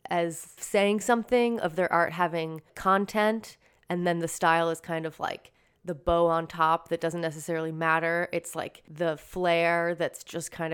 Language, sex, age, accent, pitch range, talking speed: English, female, 20-39, American, 170-205 Hz, 175 wpm